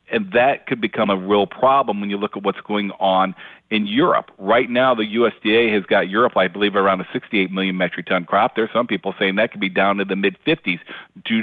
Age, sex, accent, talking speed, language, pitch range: 50-69, male, American, 235 wpm, English, 100-120 Hz